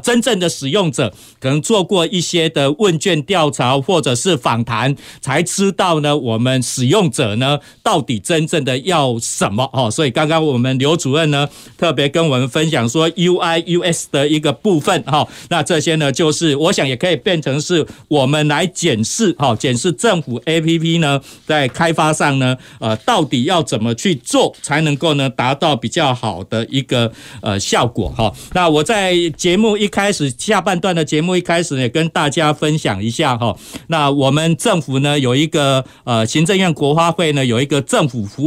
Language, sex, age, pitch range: Chinese, male, 50-69, 135-170 Hz